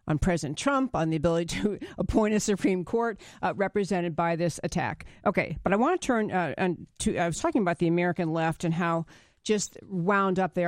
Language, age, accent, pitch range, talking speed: English, 50-69, American, 170-230 Hz, 195 wpm